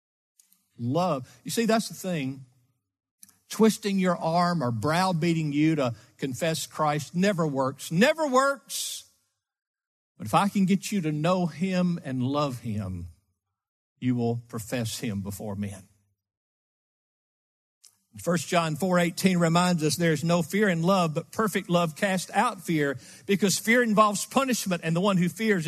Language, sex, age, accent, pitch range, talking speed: English, male, 50-69, American, 135-190 Hz, 145 wpm